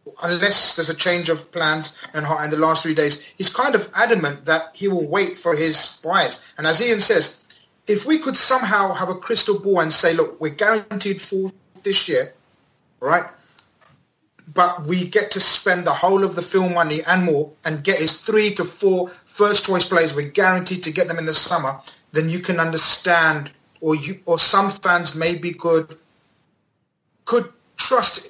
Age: 30-49